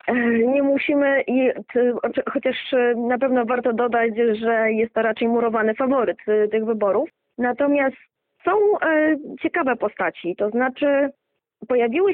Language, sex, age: Polish, female, 20-39